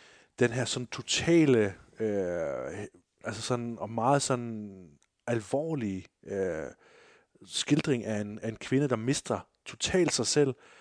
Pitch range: 105-140 Hz